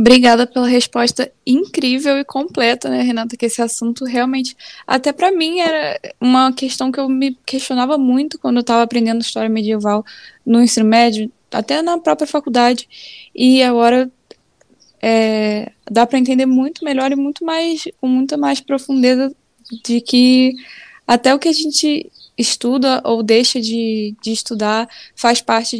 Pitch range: 225-270 Hz